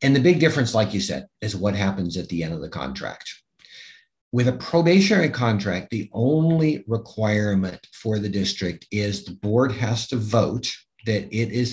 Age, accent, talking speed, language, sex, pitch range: 50-69, American, 180 wpm, English, male, 100-125 Hz